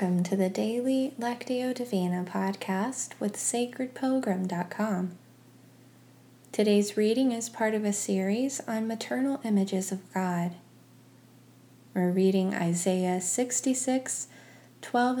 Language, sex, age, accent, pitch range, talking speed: English, female, 20-39, American, 130-210 Hz, 105 wpm